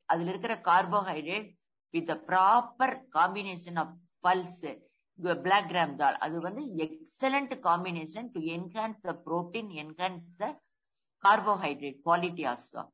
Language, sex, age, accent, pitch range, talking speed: English, female, 50-69, Indian, 165-215 Hz, 110 wpm